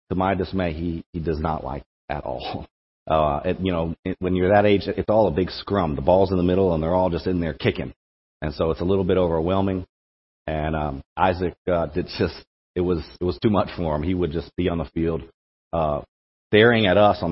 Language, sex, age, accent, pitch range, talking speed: English, male, 40-59, American, 80-100 Hz, 245 wpm